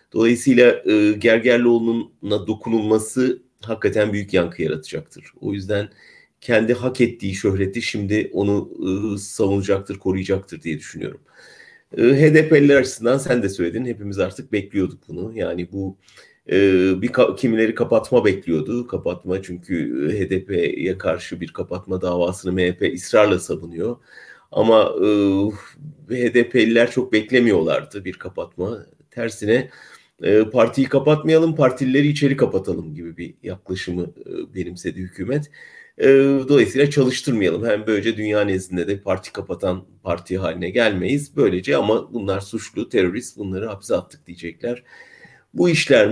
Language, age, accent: German, 40-59, Turkish